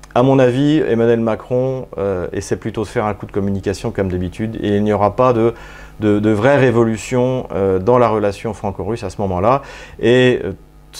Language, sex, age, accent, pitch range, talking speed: French, male, 30-49, French, 100-125 Hz, 195 wpm